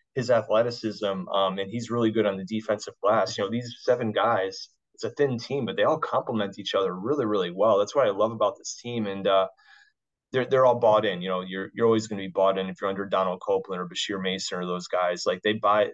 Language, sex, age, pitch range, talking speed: English, male, 20-39, 100-115 Hz, 250 wpm